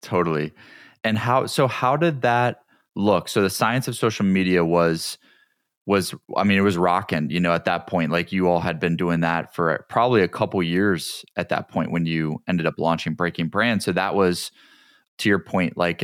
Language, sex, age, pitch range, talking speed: English, male, 20-39, 85-105 Hz, 205 wpm